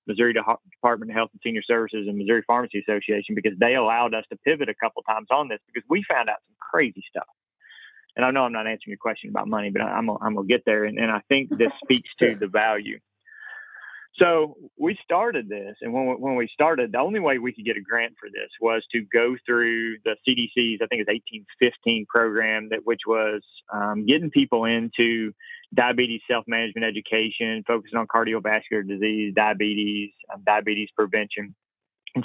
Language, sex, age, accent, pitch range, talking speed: English, male, 30-49, American, 110-125 Hz, 195 wpm